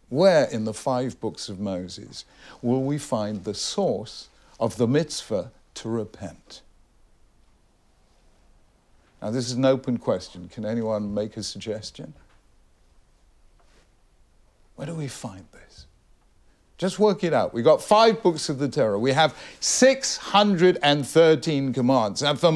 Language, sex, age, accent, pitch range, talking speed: English, male, 60-79, British, 105-155 Hz, 135 wpm